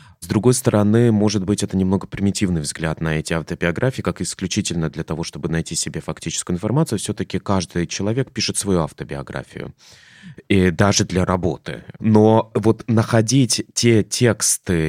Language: Russian